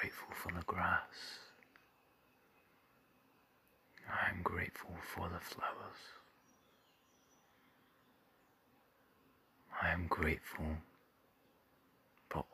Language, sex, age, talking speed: English, male, 40-59, 65 wpm